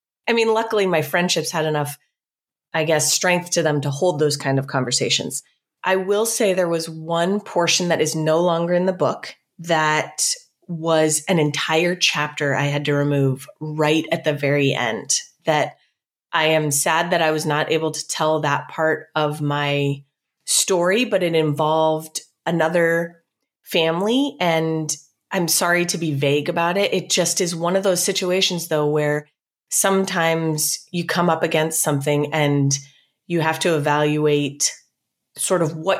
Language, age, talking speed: English, 30-49, 165 wpm